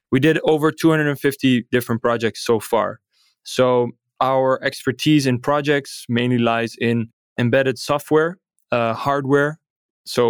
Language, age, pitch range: English, 20-39, 120-140 Hz